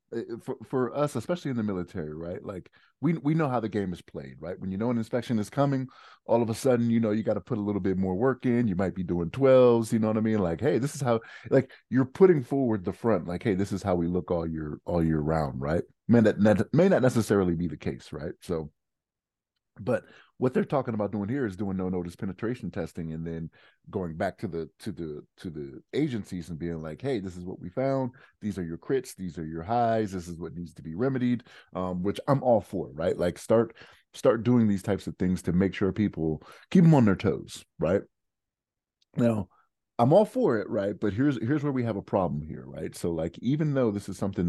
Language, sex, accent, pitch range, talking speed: English, male, American, 85-120 Hz, 245 wpm